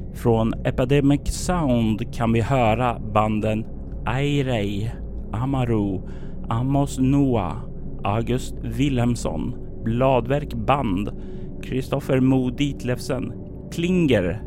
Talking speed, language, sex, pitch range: 80 wpm, Swedish, male, 105-145 Hz